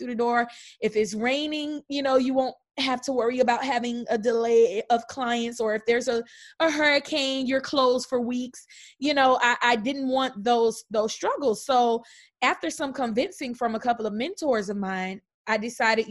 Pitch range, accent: 225-260 Hz, American